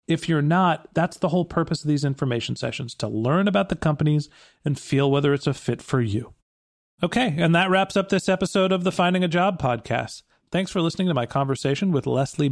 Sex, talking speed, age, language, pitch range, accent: male, 215 wpm, 40-59, English, 140-180 Hz, American